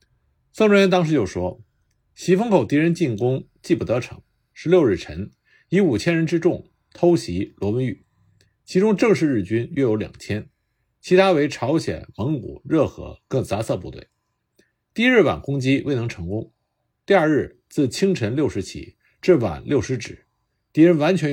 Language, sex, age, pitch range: Chinese, male, 50-69, 110-165 Hz